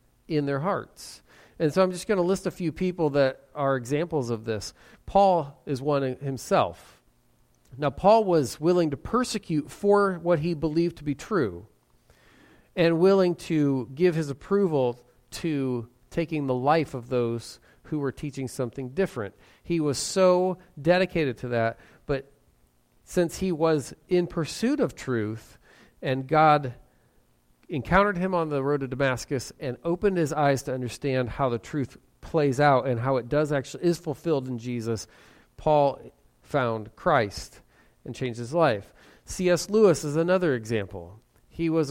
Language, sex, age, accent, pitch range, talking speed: English, male, 40-59, American, 125-170 Hz, 155 wpm